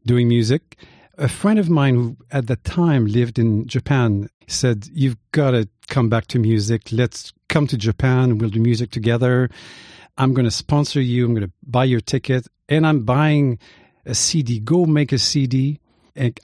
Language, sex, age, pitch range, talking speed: English, male, 50-69, 115-145 Hz, 185 wpm